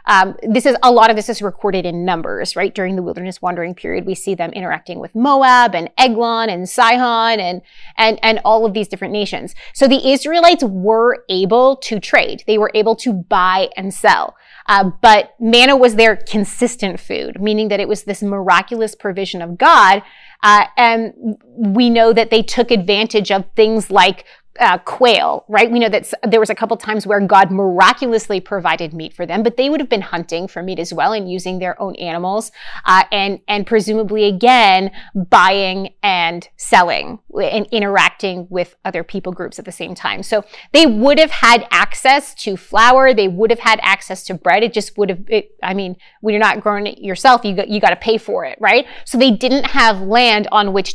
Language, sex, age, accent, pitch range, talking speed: English, female, 30-49, American, 185-230 Hz, 200 wpm